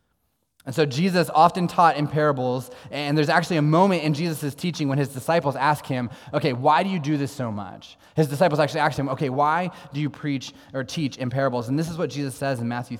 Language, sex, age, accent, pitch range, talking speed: English, male, 20-39, American, 110-150 Hz, 230 wpm